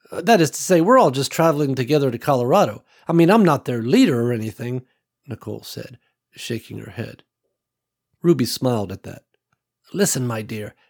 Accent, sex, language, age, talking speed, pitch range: American, male, English, 60-79, 170 wpm, 120-165 Hz